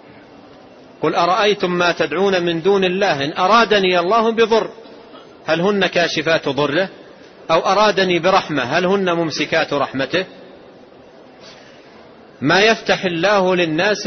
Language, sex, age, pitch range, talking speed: Arabic, male, 40-59, 180-215 Hz, 110 wpm